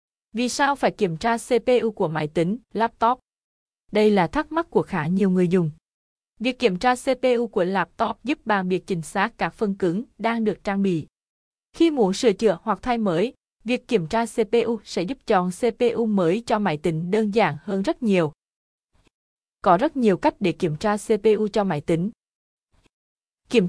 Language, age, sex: Vietnamese, 20-39, female